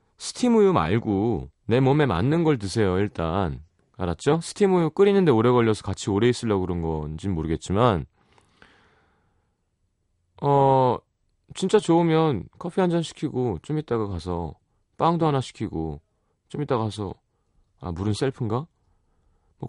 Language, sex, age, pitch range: Korean, male, 30-49, 90-135 Hz